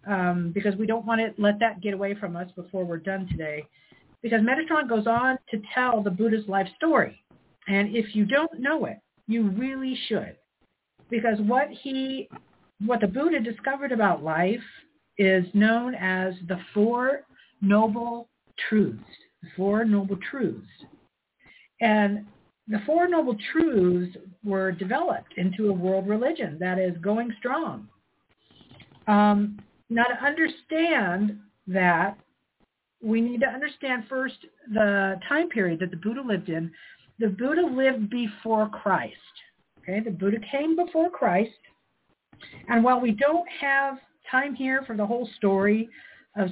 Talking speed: 140 wpm